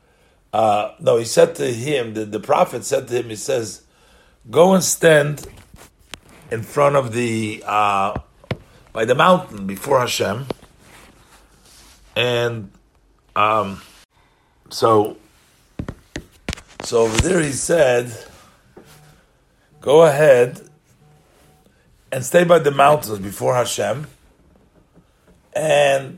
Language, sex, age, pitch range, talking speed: English, male, 50-69, 115-185 Hz, 100 wpm